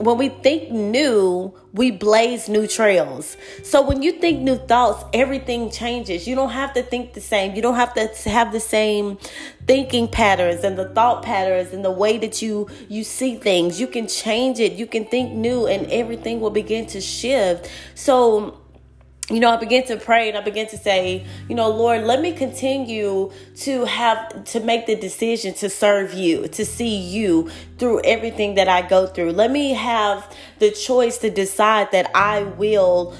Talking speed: 190 wpm